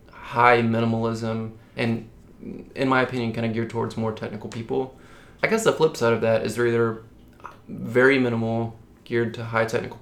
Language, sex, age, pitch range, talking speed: English, male, 20-39, 110-120 Hz, 175 wpm